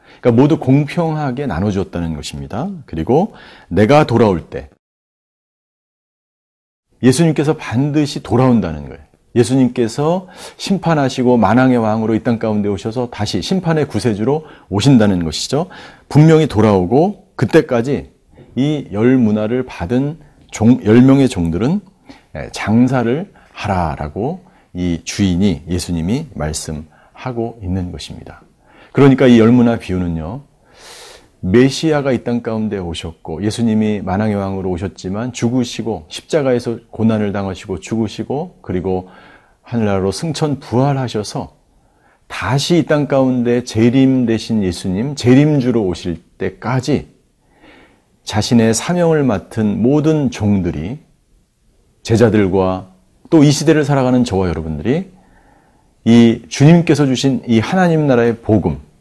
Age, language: 40-59, Korean